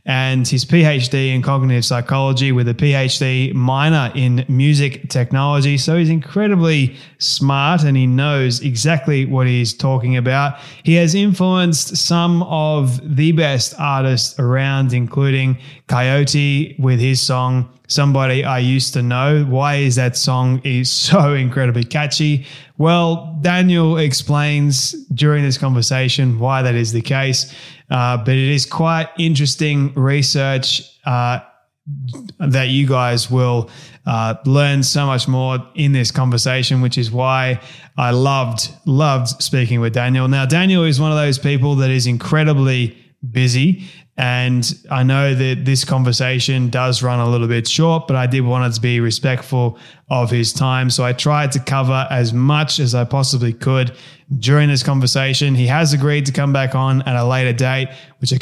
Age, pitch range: 20-39, 130-145 Hz